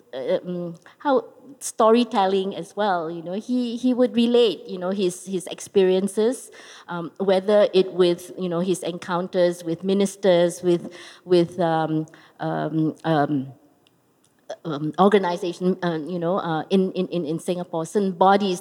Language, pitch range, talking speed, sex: English, 165-200 Hz, 140 wpm, female